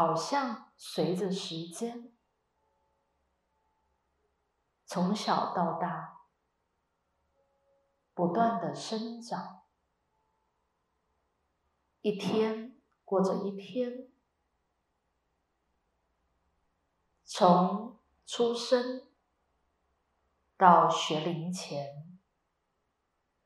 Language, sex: Chinese, female